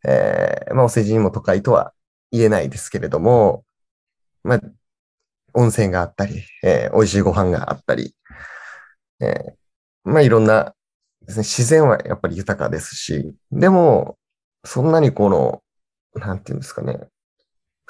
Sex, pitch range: male, 95-125 Hz